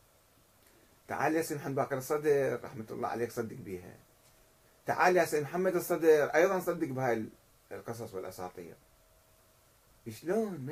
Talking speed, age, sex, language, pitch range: 135 wpm, 30-49, male, Arabic, 115-185 Hz